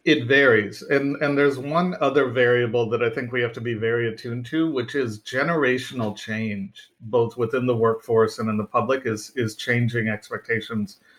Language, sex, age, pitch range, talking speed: English, male, 50-69, 110-135 Hz, 180 wpm